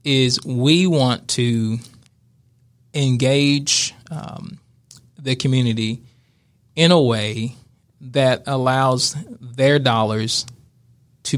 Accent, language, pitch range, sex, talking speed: American, English, 120-140 Hz, male, 85 wpm